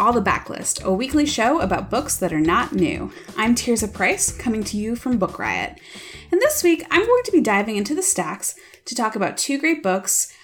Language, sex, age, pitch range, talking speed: English, female, 20-39, 185-275 Hz, 225 wpm